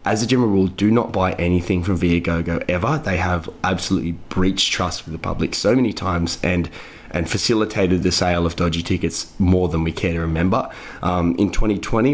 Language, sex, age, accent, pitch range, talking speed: English, male, 20-39, Australian, 90-110 Hz, 195 wpm